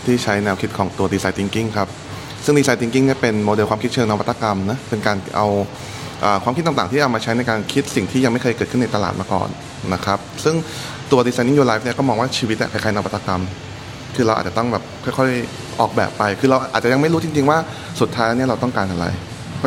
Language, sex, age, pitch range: Thai, male, 20-39, 100-130 Hz